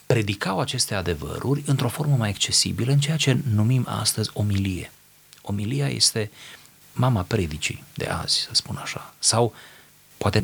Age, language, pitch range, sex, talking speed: 30-49, Romanian, 100-140 Hz, male, 140 wpm